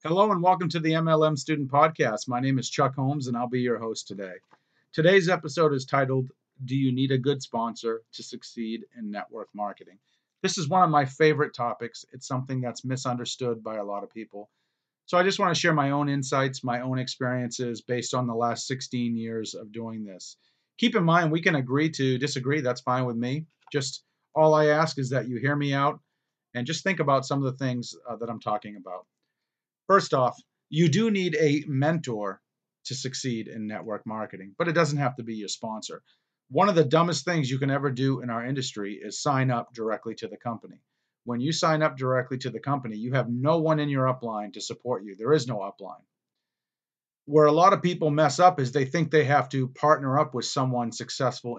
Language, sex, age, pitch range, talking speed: English, male, 40-59, 120-155 Hz, 215 wpm